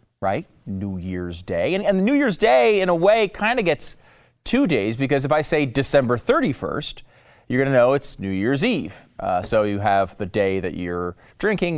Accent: American